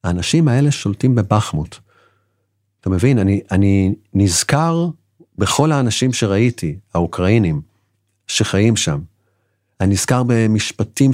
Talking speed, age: 95 wpm, 50-69